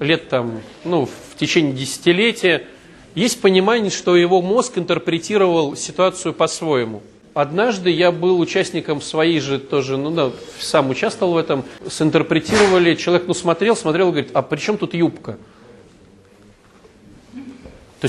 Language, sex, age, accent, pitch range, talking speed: Russian, male, 40-59, native, 150-200 Hz, 130 wpm